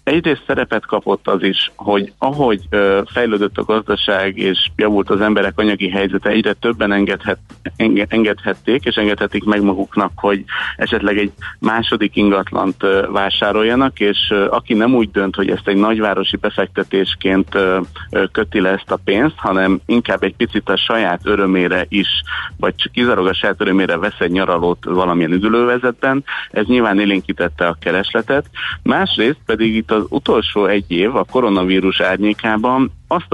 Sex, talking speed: male, 140 wpm